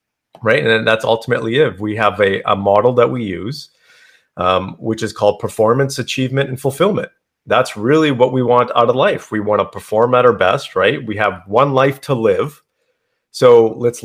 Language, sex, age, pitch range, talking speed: English, male, 30-49, 110-135 Hz, 190 wpm